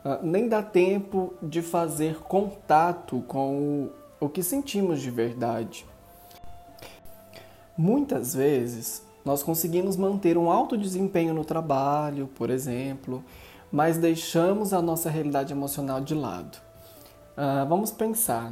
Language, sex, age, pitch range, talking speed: Portuguese, male, 20-39, 130-180 Hz, 115 wpm